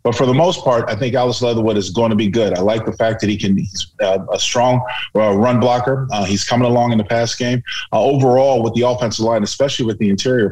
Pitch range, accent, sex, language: 100-120 Hz, American, male, English